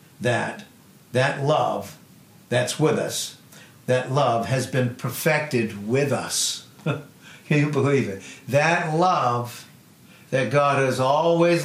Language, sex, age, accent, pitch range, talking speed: English, male, 60-79, American, 120-160 Hz, 120 wpm